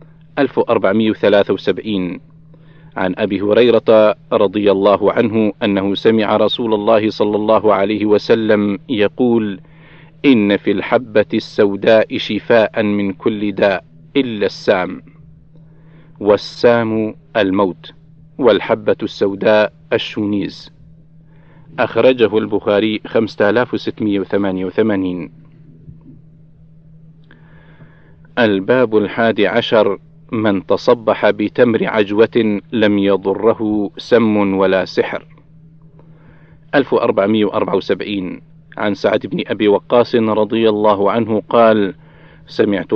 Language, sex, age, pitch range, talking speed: Arabic, male, 50-69, 105-155 Hz, 80 wpm